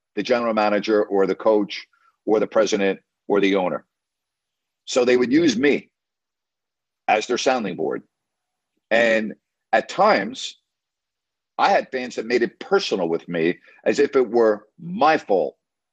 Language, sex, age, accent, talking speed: English, male, 50-69, American, 145 wpm